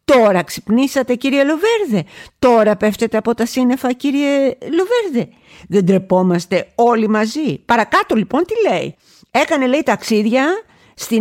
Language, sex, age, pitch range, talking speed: Greek, female, 50-69, 190-255 Hz, 125 wpm